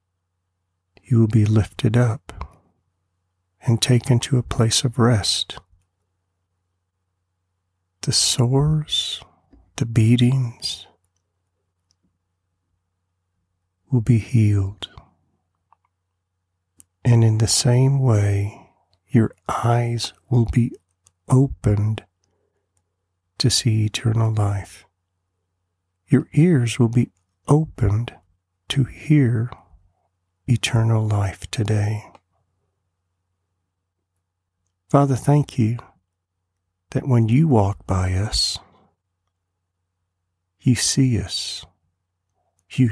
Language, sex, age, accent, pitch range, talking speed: English, male, 50-69, American, 90-120 Hz, 80 wpm